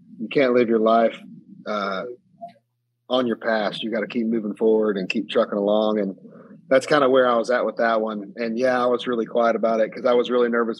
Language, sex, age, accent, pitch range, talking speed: English, male, 30-49, American, 110-130 Hz, 240 wpm